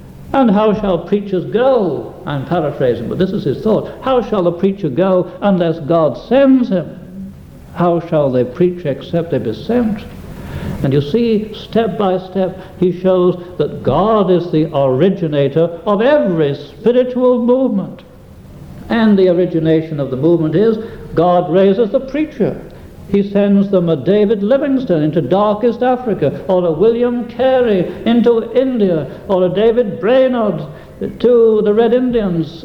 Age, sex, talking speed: 60-79, male, 145 wpm